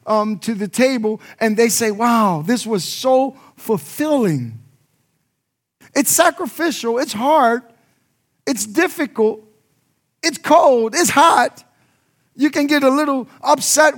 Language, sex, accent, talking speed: English, male, American, 120 wpm